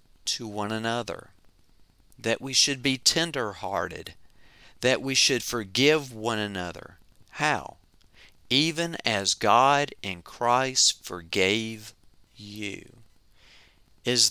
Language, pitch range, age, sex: English, 100-125 Hz, 40-59, male